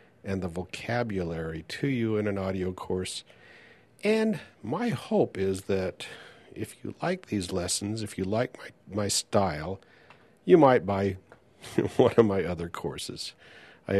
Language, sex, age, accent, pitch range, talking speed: English, male, 50-69, American, 90-105 Hz, 145 wpm